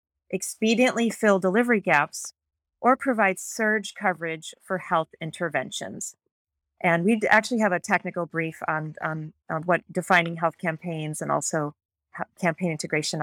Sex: female